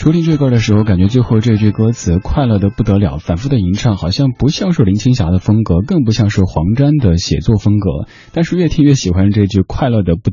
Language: Chinese